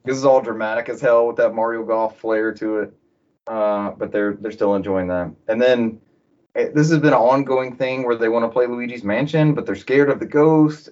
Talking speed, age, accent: 230 wpm, 30-49, American